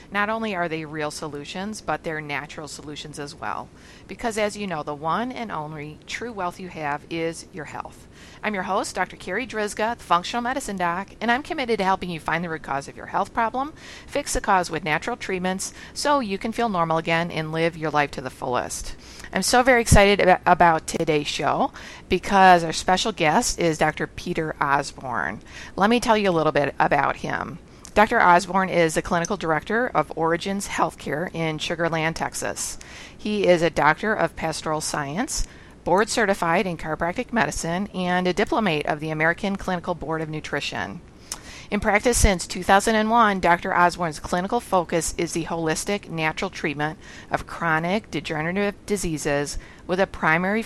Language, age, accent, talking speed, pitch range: English, 50-69, American, 175 wpm, 155-205 Hz